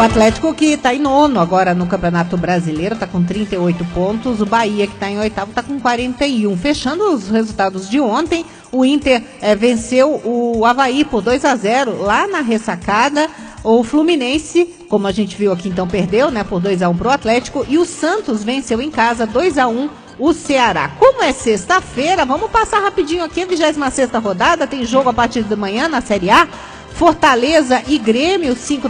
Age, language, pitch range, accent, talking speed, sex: 50-69, English, 220-290 Hz, Brazilian, 175 wpm, female